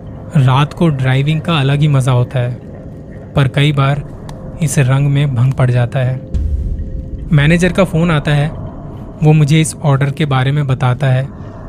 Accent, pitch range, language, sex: native, 130-160 Hz, Hindi, male